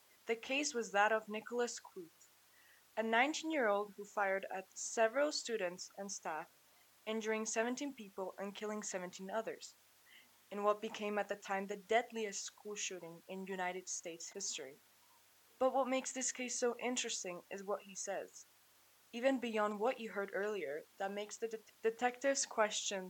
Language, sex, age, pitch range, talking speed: English, female, 20-39, 190-230 Hz, 155 wpm